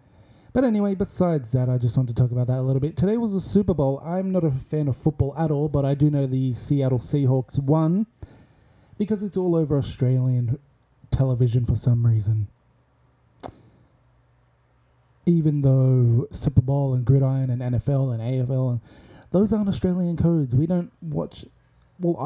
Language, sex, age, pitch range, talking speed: English, male, 20-39, 125-150 Hz, 170 wpm